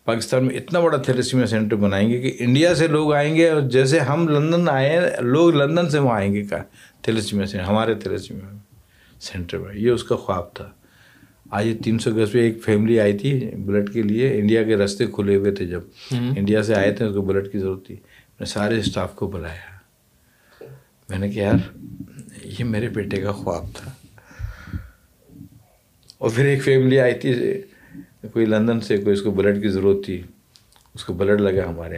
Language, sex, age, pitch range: Urdu, male, 60-79, 100-140 Hz